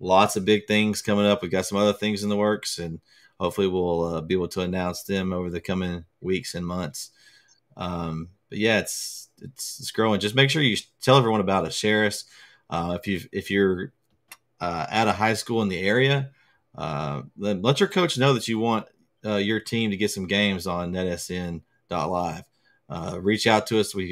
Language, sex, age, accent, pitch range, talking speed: English, male, 30-49, American, 90-110 Hz, 205 wpm